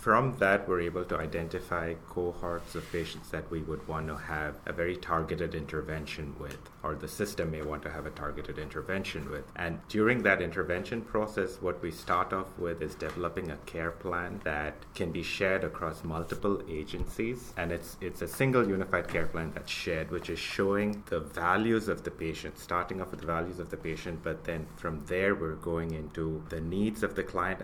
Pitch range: 80-95 Hz